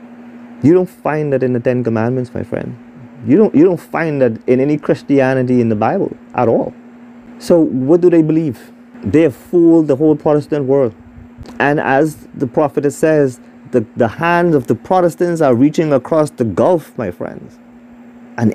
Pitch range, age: 115-170 Hz, 30-49